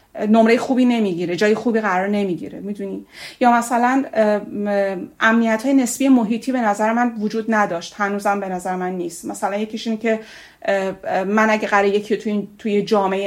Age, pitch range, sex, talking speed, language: 30-49, 195-230 Hz, female, 155 wpm, Persian